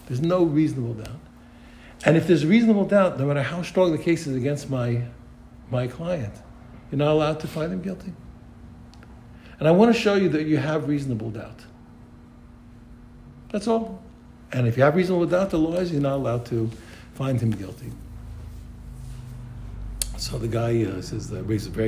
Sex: male